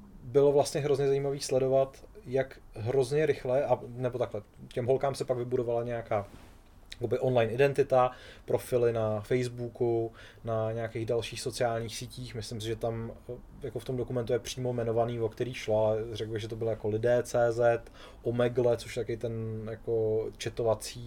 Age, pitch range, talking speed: 20-39, 115-125 Hz, 160 wpm